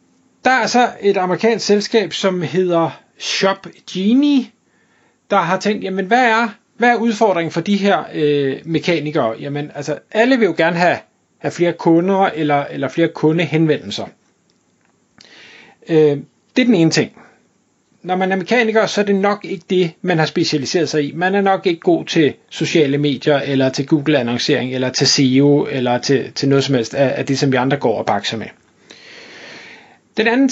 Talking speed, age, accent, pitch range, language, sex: 185 wpm, 30-49, native, 145-205 Hz, Danish, male